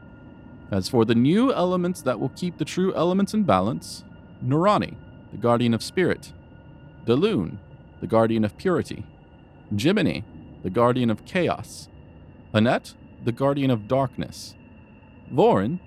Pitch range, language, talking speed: 105-150 Hz, English, 130 wpm